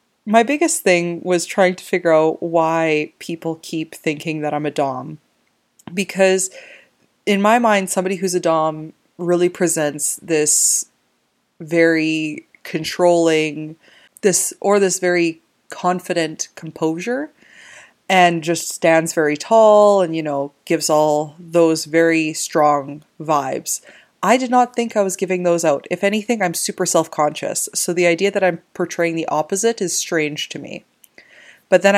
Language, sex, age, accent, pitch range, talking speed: English, female, 20-39, American, 160-190 Hz, 145 wpm